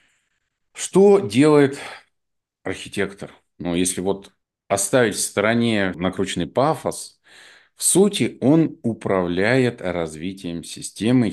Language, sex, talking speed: Russian, male, 90 wpm